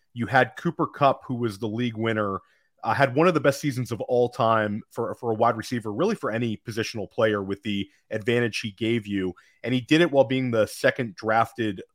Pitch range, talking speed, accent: 110-130 Hz, 215 wpm, American